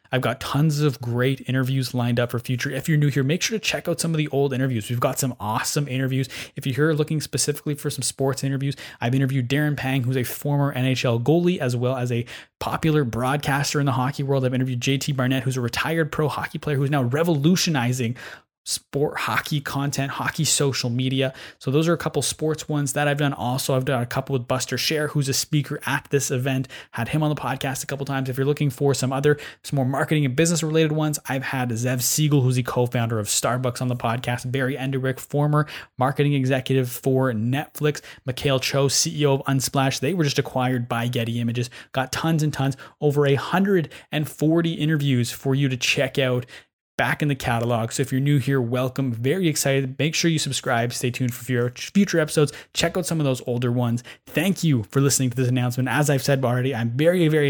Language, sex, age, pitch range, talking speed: English, male, 20-39, 125-150 Hz, 220 wpm